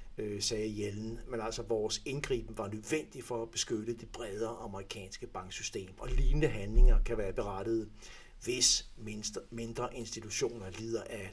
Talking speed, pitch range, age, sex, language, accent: 140 wpm, 105-120 Hz, 60-79, male, Danish, native